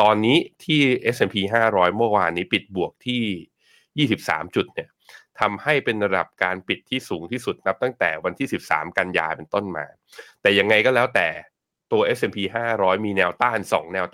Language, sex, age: Thai, male, 20-39